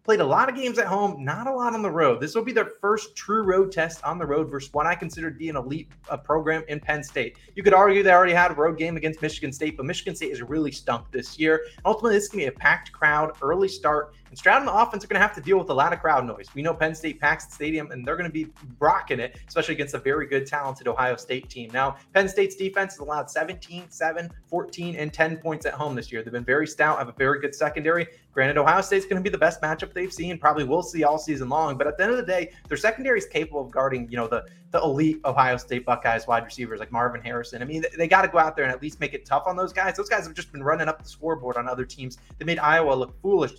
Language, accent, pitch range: English, American, 140-180 Hz